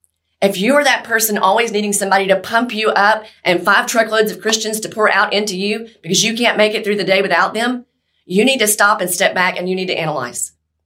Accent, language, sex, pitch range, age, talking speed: American, English, female, 175-225 Hz, 30-49, 245 wpm